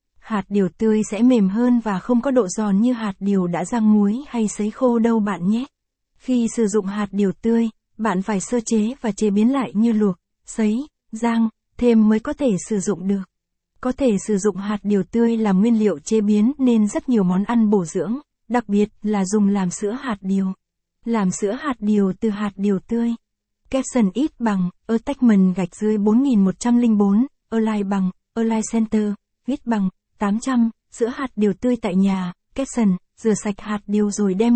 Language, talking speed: Vietnamese, 200 wpm